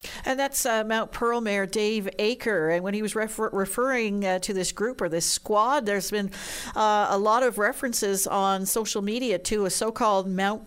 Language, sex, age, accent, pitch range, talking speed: English, female, 50-69, American, 170-215 Hz, 190 wpm